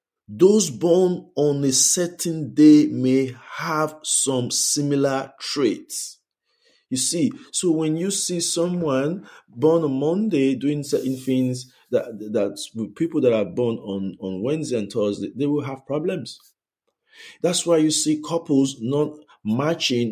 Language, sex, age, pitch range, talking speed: English, male, 50-69, 130-170 Hz, 135 wpm